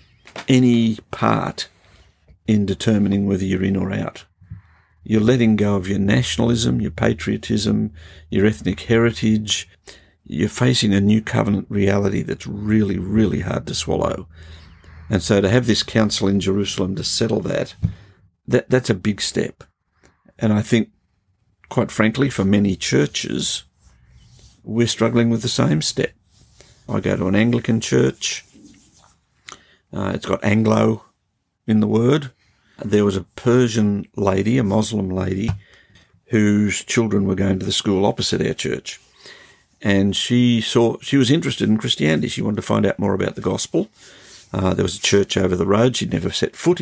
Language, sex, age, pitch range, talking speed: English, male, 50-69, 95-115 Hz, 155 wpm